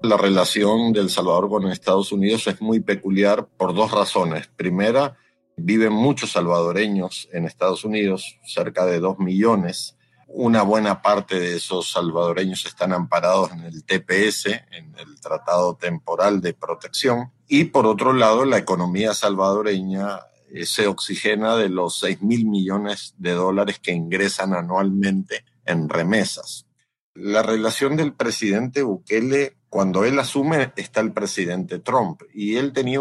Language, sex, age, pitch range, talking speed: Spanish, male, 50-69, 95-110 Hz, 140 wpm